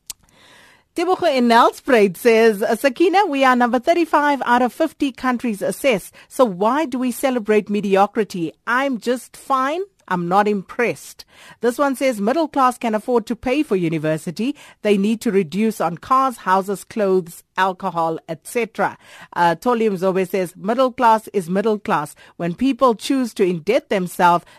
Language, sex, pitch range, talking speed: English, female, 185-245 Hz, 145 wpm